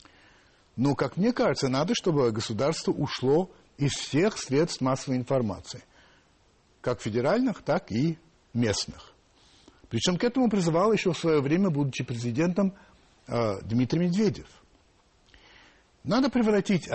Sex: male